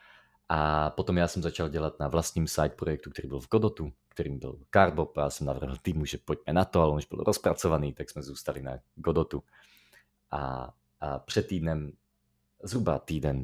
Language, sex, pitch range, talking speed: Slovak, male, 70-90 Hz, 185 wpm